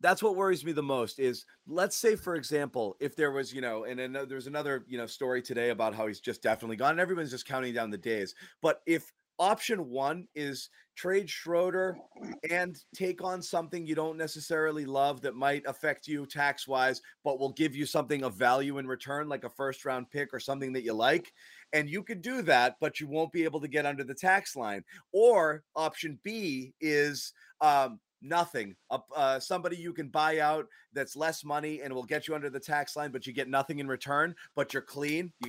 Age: 30-49